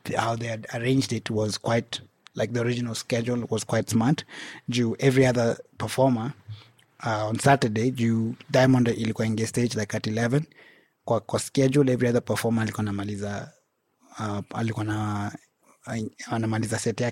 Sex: male